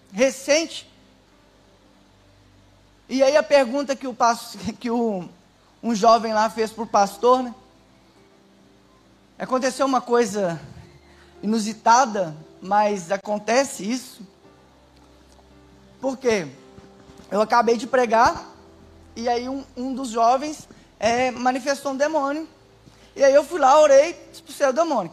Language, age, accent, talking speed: Portuguese, 20-39, Brazilian, 115 wpm